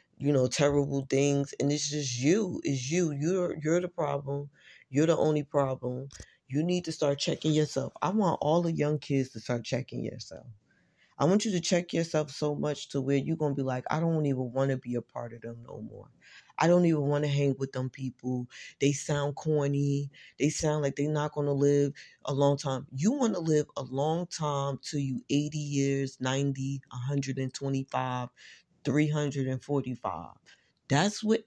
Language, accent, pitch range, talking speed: English, American, 135-160 Hz, 200 wpm